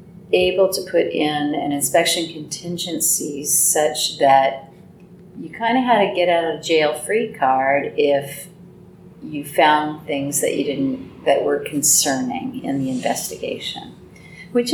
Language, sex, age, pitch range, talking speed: English, female, 40-59, 145-185 Hz, 140 wpm